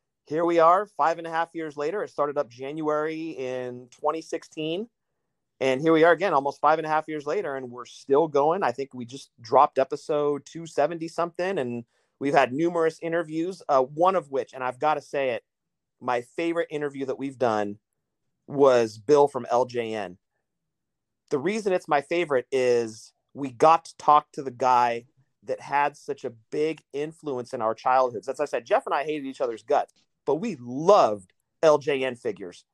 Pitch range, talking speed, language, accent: 130-165 Hz, 185 wpm, English, American